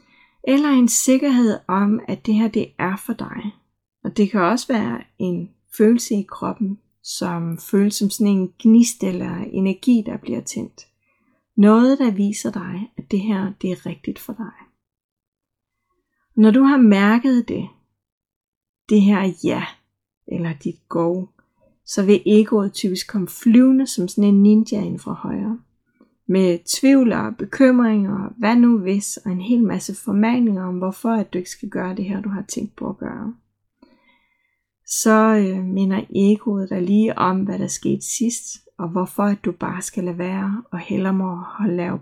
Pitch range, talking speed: 185-225 Hz, 165 wpm